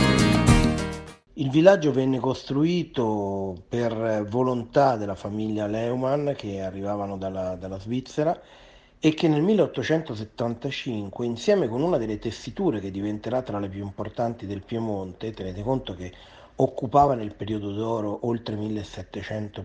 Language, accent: Italian, native